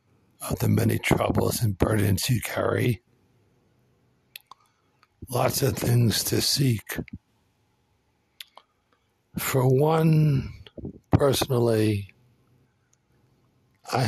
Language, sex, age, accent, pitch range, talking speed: English, male, 60-79, American, 105-125 Hz, 70 wpm